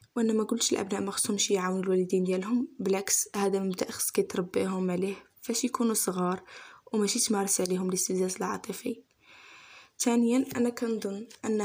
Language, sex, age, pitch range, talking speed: Arabic, female, 10-29, 195-225 Hz, 135 wpm